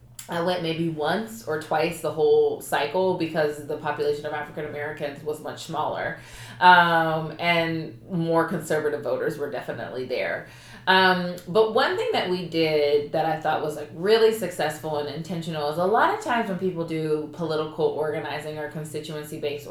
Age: 20-39